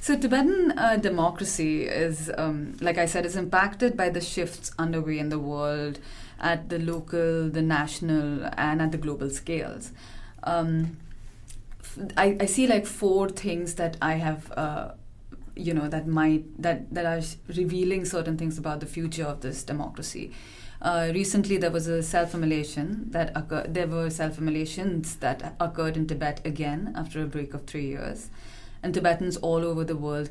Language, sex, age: English, female, 30-49